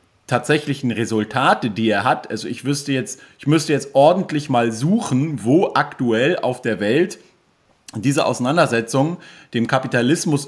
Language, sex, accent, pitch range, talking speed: German, male, German, 120-145 Hz, 140 wpm